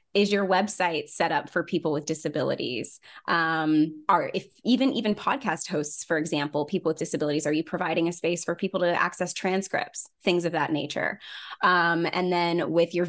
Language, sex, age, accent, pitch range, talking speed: English, female, 20-39, American, 165-195 Hz, 185 wpm